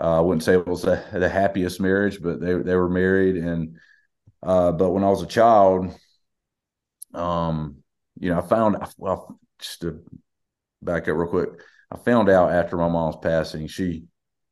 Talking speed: 180 wpm